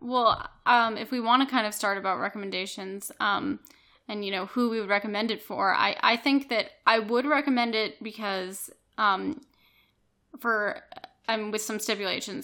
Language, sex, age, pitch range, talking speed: English, female, 10-29, 205-235 Hz, 175 wpm